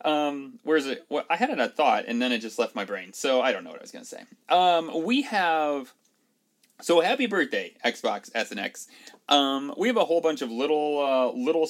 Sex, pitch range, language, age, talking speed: male, 145-245 Hz, English, 30-49, 230 wpm